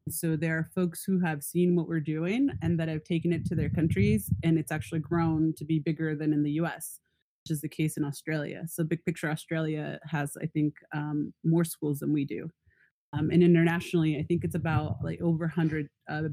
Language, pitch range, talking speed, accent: English, 145-165 Hz, 215 wpm, American